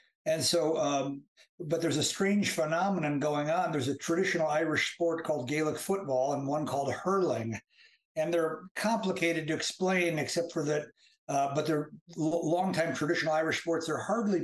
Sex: male